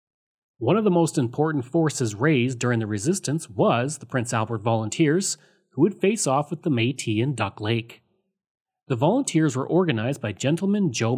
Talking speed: 170 wpm